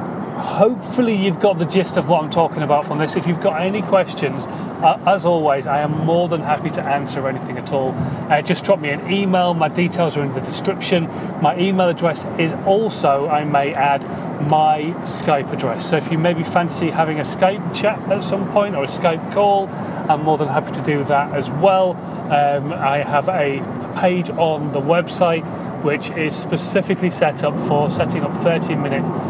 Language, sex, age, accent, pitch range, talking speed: English, male, 30-49, British, 150-190 Hz, 195 wpm